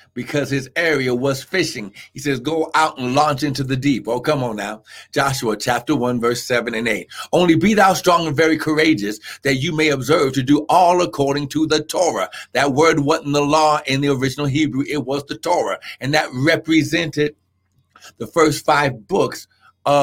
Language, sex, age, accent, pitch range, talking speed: English, male, 60-79, American, 140-200 Hz, 190 wpm